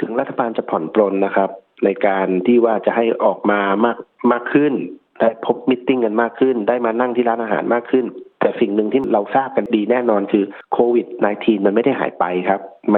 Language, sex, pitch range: Thai, male, 105-120 Hz